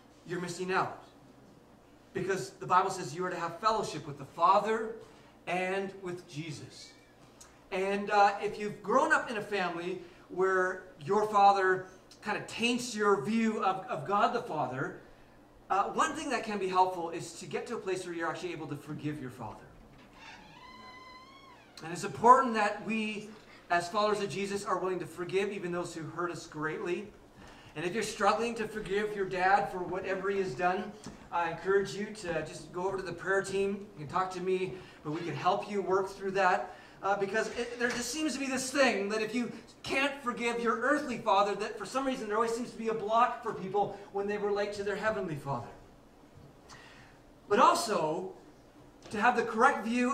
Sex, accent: male, American